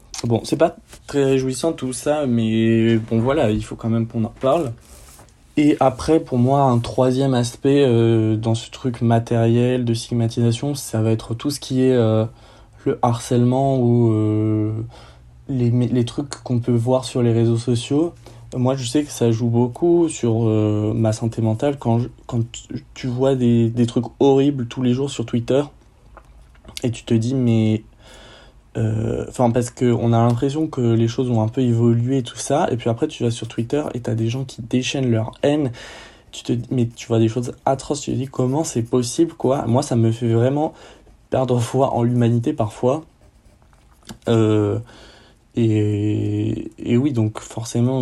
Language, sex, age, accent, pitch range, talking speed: French, male, 20-39, French, 115-130 Hz, 180 wpm